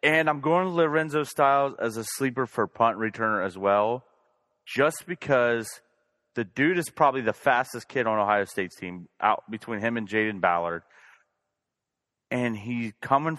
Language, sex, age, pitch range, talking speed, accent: English, male, 30-49, 105-140 Hz, 160 wpm, American